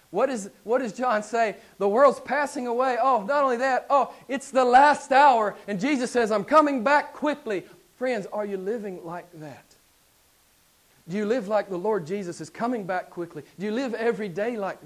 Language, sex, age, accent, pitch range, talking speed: English, male, 40-59, American, 155-215 Hz, 200 wpm